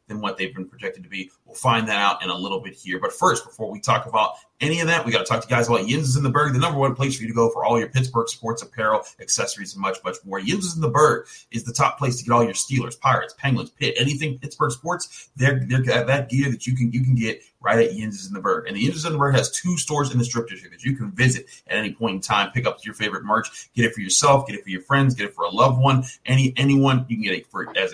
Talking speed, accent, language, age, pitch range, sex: 305 wpm, American, English, 30-49, 115-140 Hz, male